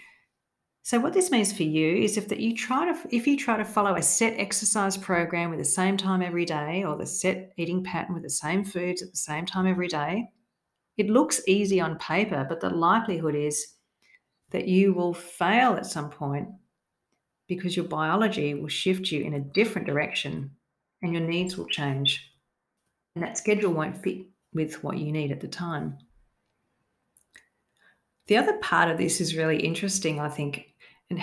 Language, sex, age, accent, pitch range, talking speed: English, female, 40-59, Australian, 155-195 Hz, 185 wpm